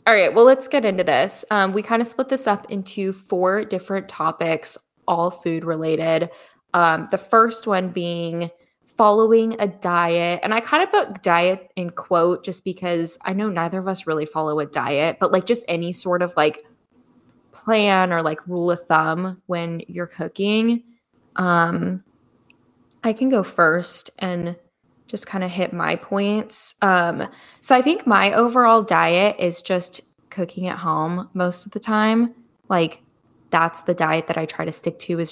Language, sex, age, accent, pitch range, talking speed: English, female, 10-29, American, 170-215 Hz, 175 wpm